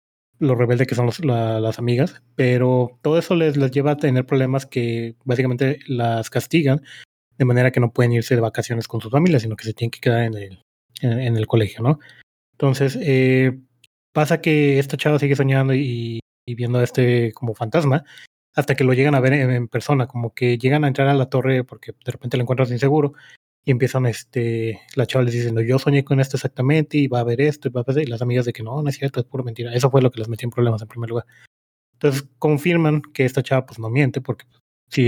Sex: male